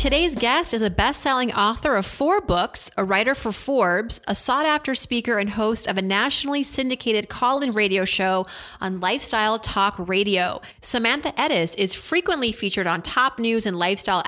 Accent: American